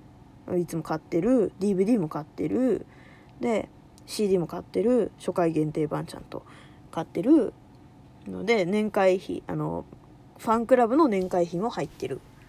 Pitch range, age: 175-285 Hz, 20-39